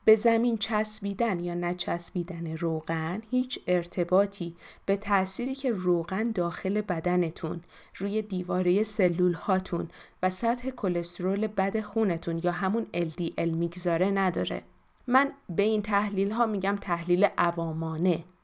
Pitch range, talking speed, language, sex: 165-200 Hz, 115 wpm, Persian, female